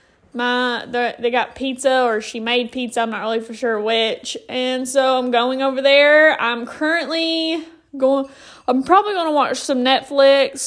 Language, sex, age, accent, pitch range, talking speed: English, female, 10-29, American, 240-285 Hz, 165 wpm